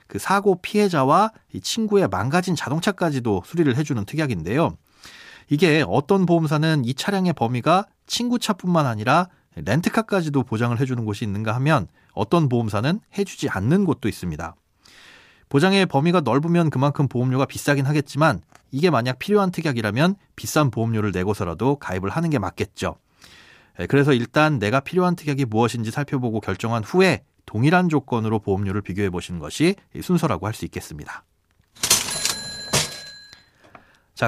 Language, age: Korean, 30-49